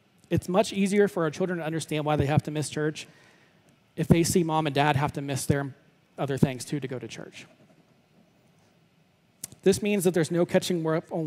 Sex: male